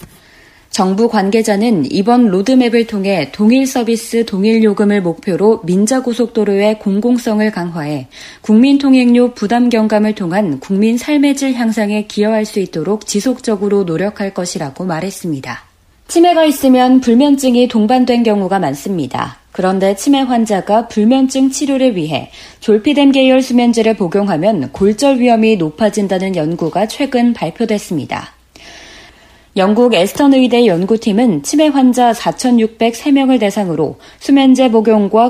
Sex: female